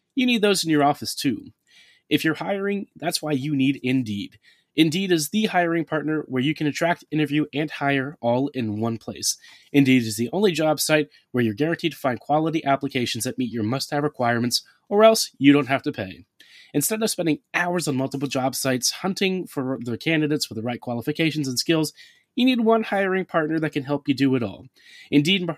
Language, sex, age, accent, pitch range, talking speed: English, male, 30-49, American, 130-165 Hz, 205 wpm